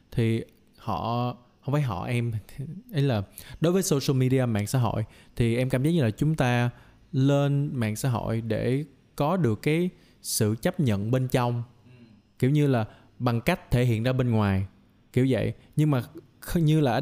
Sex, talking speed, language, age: male, 185 wpm, Vietnamese, 20-39